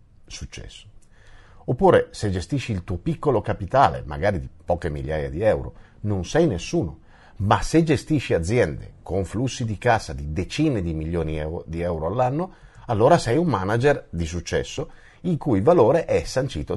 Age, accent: 50-69, native